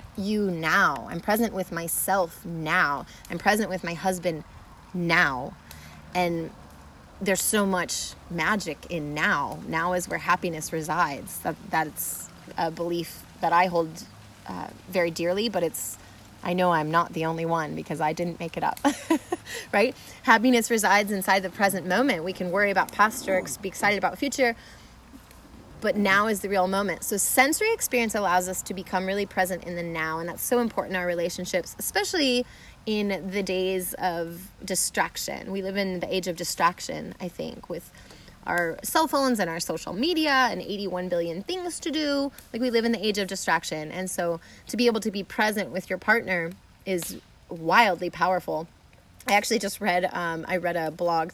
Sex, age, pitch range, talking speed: female, 30-49, 170-205 Hz, 180 wpm